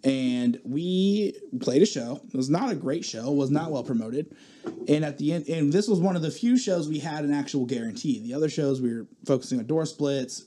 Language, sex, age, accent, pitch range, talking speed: English, male, 20-39, American, 135-195 Hz, 235 wpm